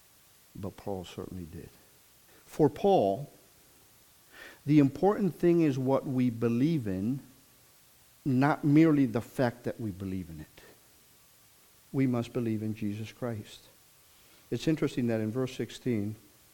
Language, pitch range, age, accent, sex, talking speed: English, 115-160 Hz, 50-69, American, male, 125 wpm